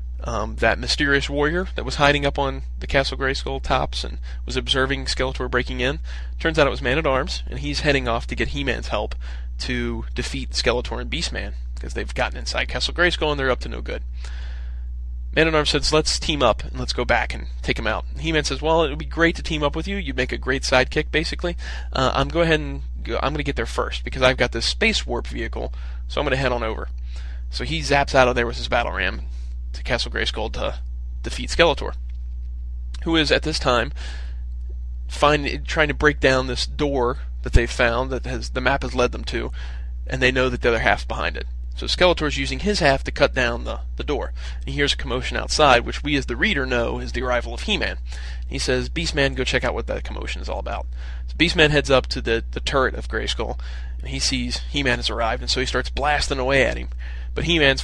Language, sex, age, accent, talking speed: English, male, 30-49, American, 225 wpm